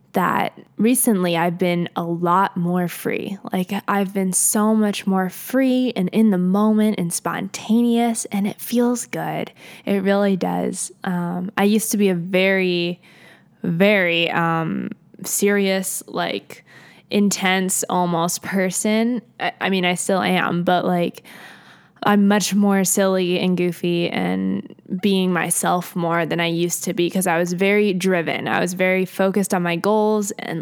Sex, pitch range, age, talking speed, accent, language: female, 180-210 Hz, 10-29, 155 wpm, American, English